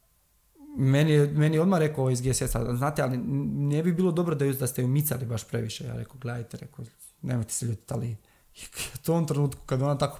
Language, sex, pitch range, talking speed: Croatian, male, 120-155 Hz, 210 wpm